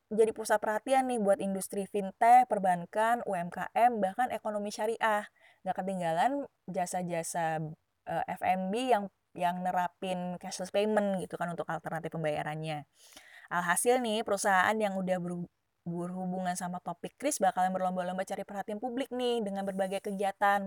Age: 20-39